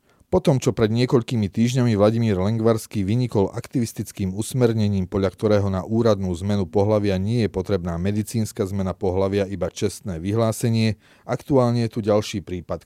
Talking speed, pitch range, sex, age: 140 wpm, 95-115 Hz, male, 30-49